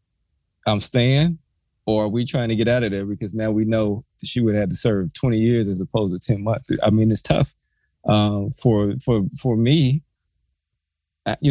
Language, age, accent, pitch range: English, 20-39, American, 105-125 Hz